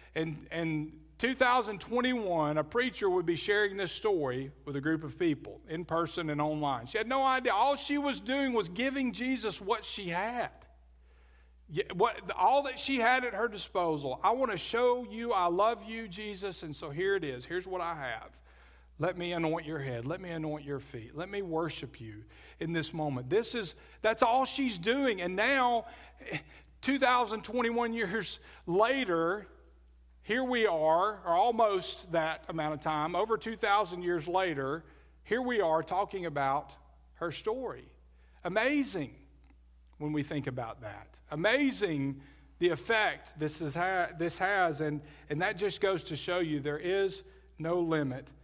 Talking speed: 155 wpm